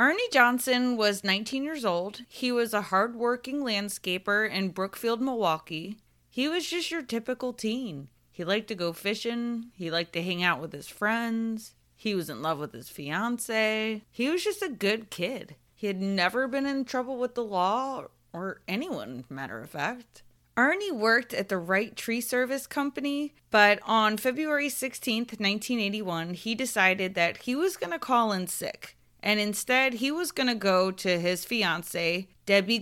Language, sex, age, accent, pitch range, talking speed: English, female, 30-49, American, 185-255 Hz, 170 wpm